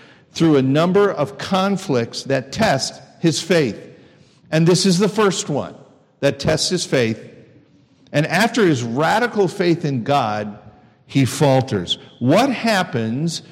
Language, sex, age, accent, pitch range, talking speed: English, male, 50-69, American, 140-190 Hz, 135 wpm